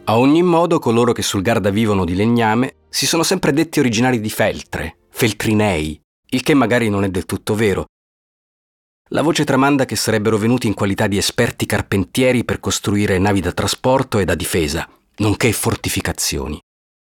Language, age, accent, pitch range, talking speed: Italian, 40-59, native, 95-130 Hz, 165 wpm